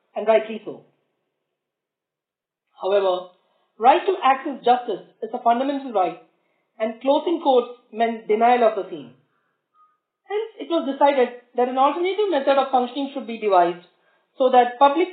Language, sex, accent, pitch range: English, female, Indian, 230-290 Hz